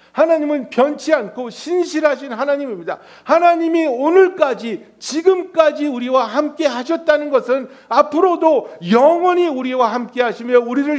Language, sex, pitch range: Korean, male, 215-295 Hz